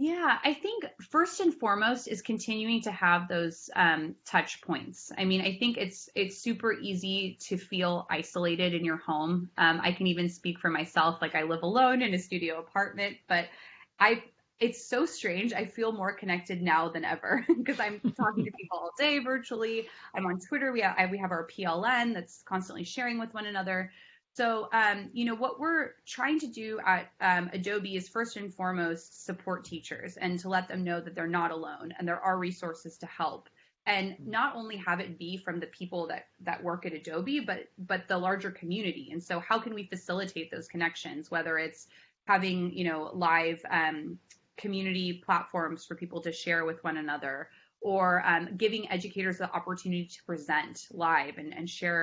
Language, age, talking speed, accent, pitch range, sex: English, 20-39, 190 wpm, American, 170-215 Hz, female